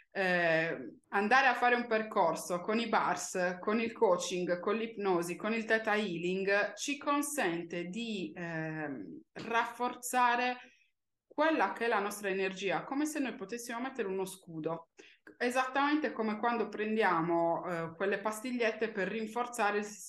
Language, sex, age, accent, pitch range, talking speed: Italian, female, 20-39, native, 180-240 Hz, 135 wpm